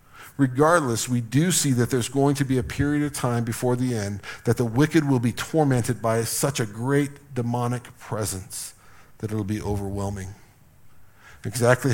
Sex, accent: male, American